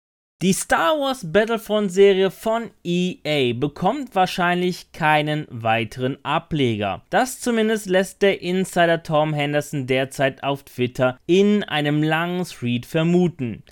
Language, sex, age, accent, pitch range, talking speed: German, male, 30-49, German, 140-195 Hz, 120 wpm